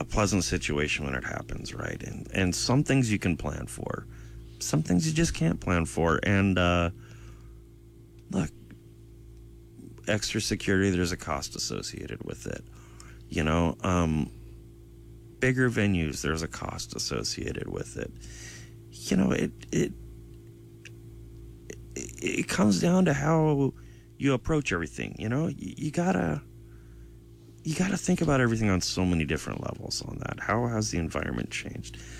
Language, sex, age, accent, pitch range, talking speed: English, male, 30-49, American, 105-125 Hz, 150 wpm